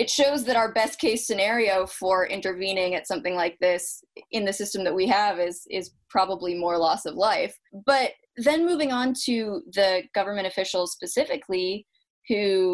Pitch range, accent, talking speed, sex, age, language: 185-250 Hz, American, 170 wpm, female, 20-39, English